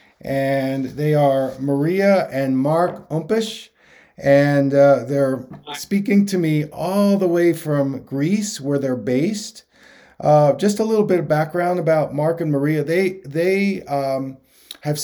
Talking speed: 145 wpm